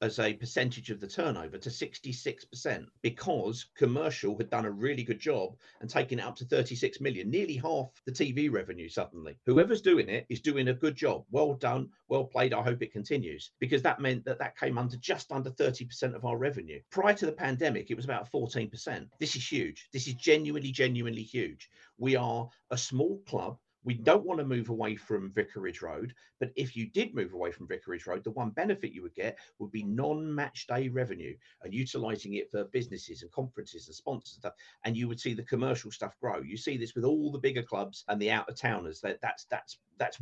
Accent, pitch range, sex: British, 115-140 Hz, male